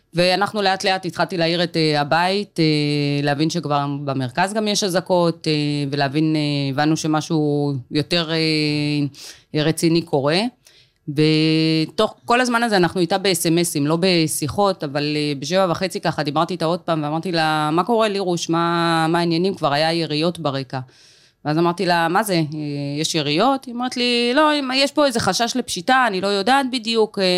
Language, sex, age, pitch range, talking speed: Hebrew, female, 20-39, 150-185 Hz, 150 wpm